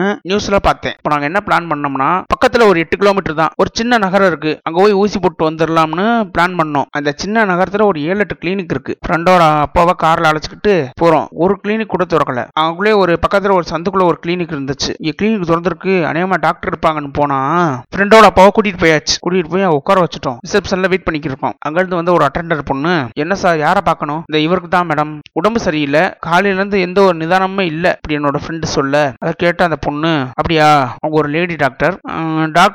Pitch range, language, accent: 155-190 Hz, Tamil, native